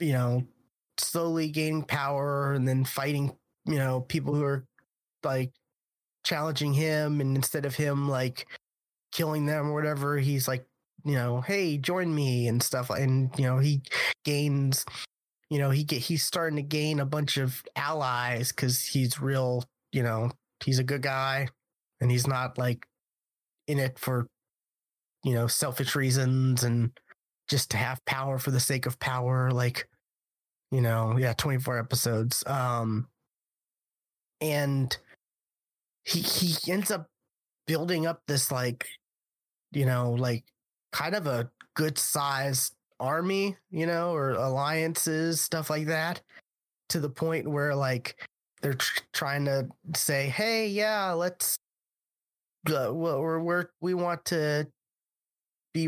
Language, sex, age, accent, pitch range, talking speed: English, male, 20-39, American, 130-155 Hz, 145 wpm